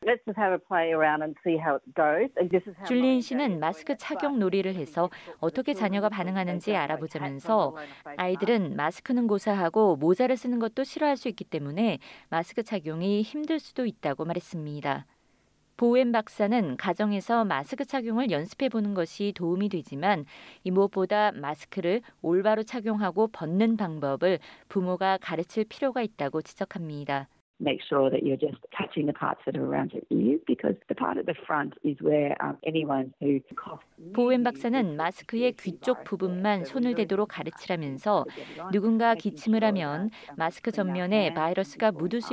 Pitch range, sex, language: 165-230 Hz, female, Korean